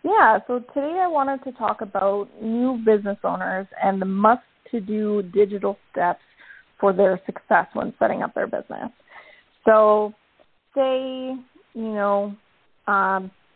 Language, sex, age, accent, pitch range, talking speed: English, female, 30-49, American, 195-235 Hz, 130 wpm